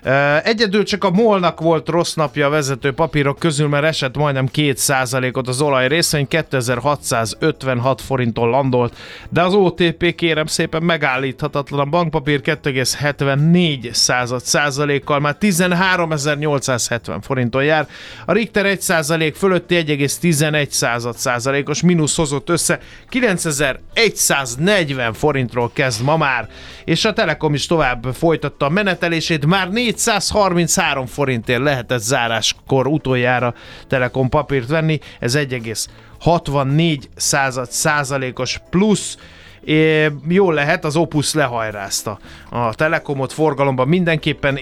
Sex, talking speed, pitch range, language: male, 110 wpm, 130-165 Hz, Hungarian